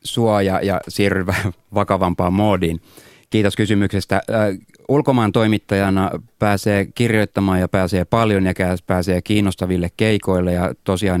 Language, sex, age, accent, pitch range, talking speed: Finnish, male, 30-49, native, 90-100 Hz, 120 wpm